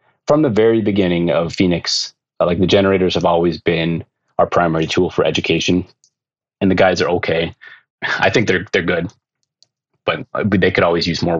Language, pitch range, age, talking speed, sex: English, 85-100 Hz, 30-49, 175 wpm, male